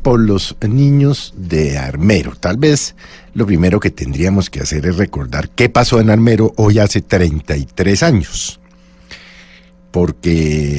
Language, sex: Spanish, male